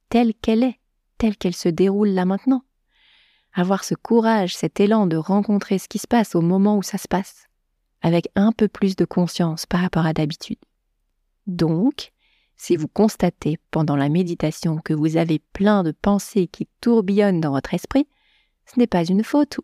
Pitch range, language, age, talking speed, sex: 170-220 Hz, French, 30-49, 180 wpm, female